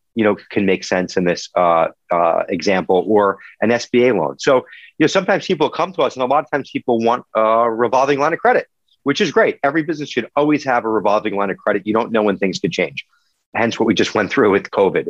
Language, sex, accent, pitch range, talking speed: English, male, American, 110-150 Hz, 245 wpm